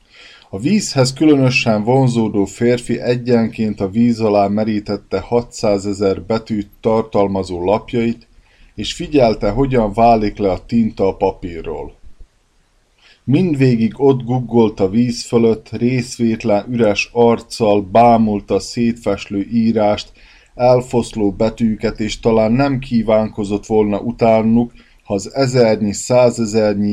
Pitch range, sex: 105-120 Hz, male